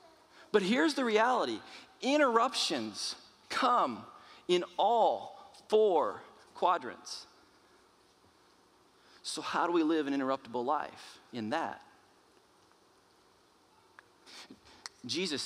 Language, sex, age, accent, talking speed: English, male, 40-59, American, 80 wpm